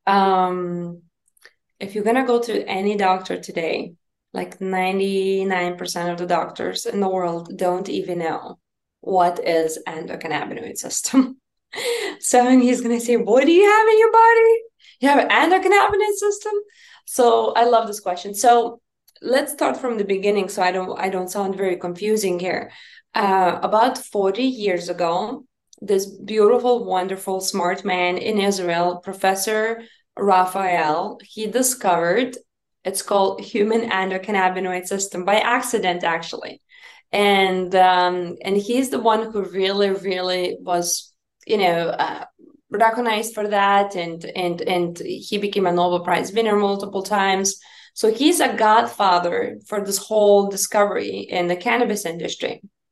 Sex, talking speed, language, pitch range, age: female, 140 wpm, English, 185-235 Hz, 20-39